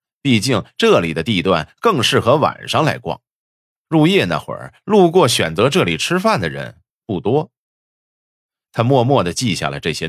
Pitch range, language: 110-165 Hz, Chinese